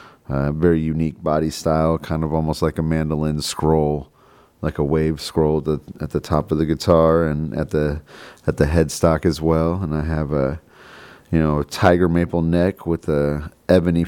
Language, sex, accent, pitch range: English, male, American, 80-95 Hz